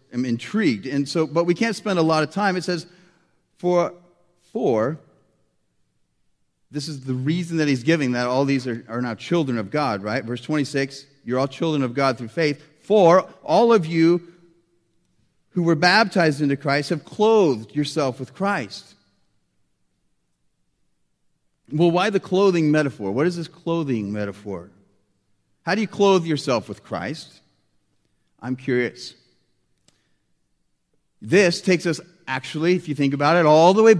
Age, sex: 40-59, male